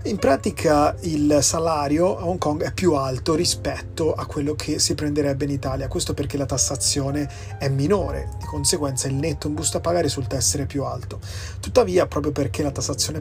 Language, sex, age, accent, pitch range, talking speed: Italian, male, 30-49, native, 100-150 Hz, 180 wpm